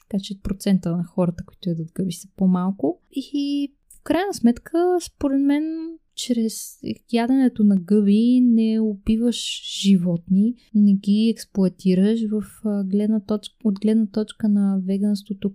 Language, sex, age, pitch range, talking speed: Bulgarian, female, 20-39, 190-230 Hz, 130 wpm